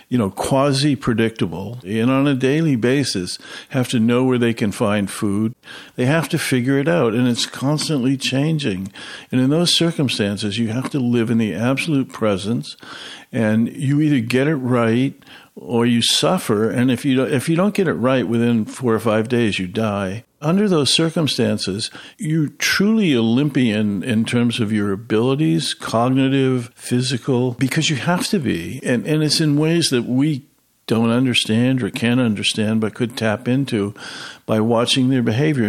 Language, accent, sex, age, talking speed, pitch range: English, American, male, 60-79, 170 wpm, 115-140 Hz